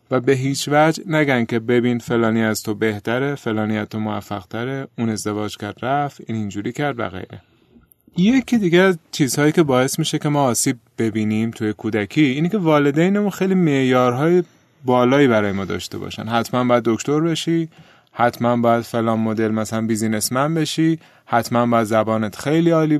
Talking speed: 160 wpm